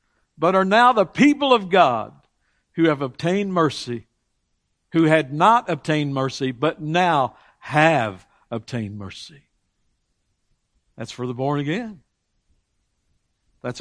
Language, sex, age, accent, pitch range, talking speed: English, male, 60-79, American, 135-185 Hz, 115 wpm